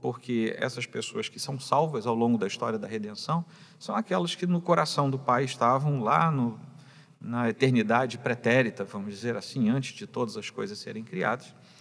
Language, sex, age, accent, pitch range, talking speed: Portuguese, male, 40-59, Brazilian, 120-160 Hz, 180 wpm